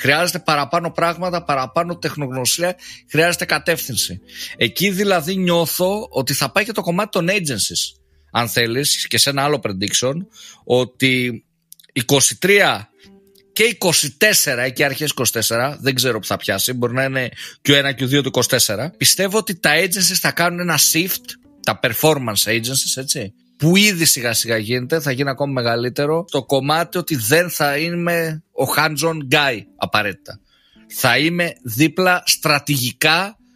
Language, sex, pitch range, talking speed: Greek, male, 130-180 Hz, 150 wpm